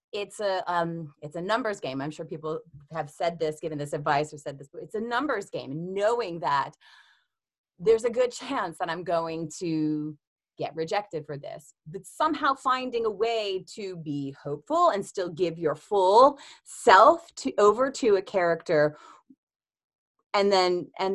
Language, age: English, 30-49